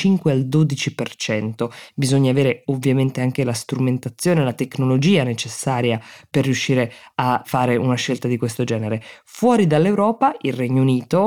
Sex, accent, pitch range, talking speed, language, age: female, native, 130-165 Hz, 135 wpm, Italian, 20-39